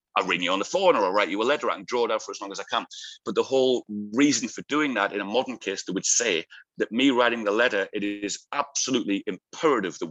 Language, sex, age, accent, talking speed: English, male, 30-49, British, 275 wpm